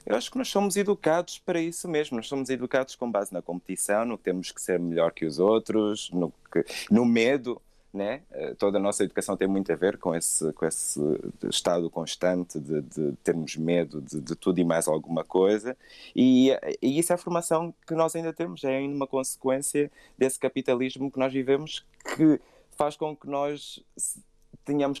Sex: male